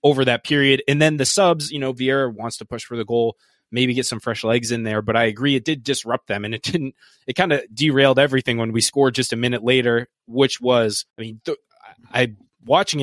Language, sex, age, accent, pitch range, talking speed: English, male, 20-39, American, 120-150 Hz, 245 wpm